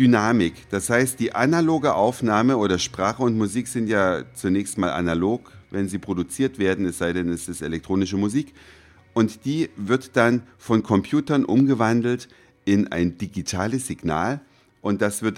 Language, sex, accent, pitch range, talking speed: German, male, German, 95-125 Hz, 155 wpm